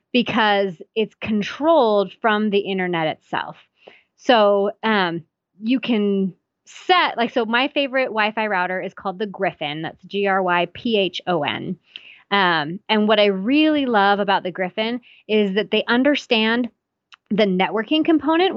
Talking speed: 130 wpm